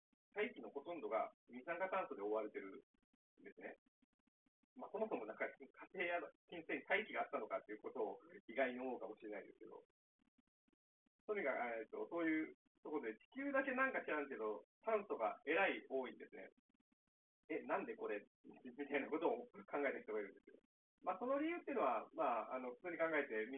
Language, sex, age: Japanese, male, 40-59